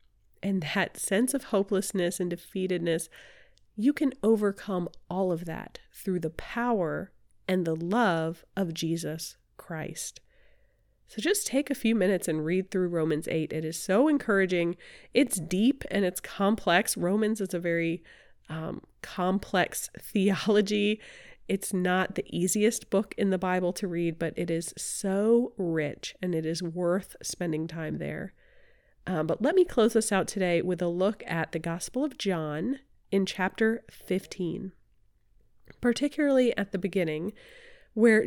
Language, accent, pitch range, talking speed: English, American, 170-230 Hz, 150 wpm